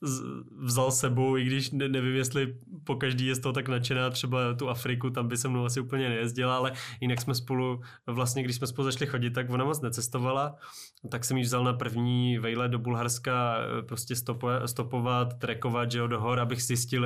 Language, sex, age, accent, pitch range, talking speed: Czech, male, 20-39, native, 110-125 Hz, 195 wpm